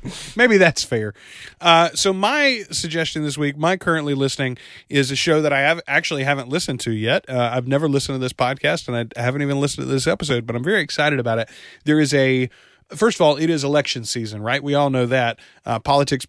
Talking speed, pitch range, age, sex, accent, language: 220 wpm, 120-145 Hz, 30-49, male, American, English